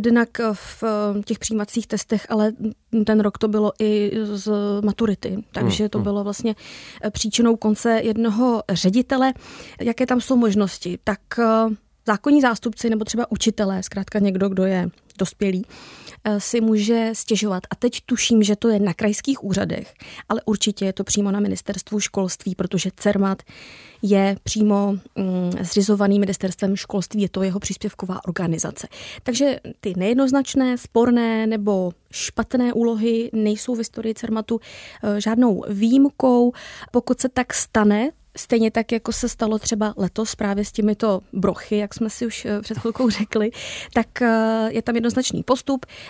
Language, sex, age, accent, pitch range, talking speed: Czech, female, 20-39, native, 205-235 Hz, 140 wpm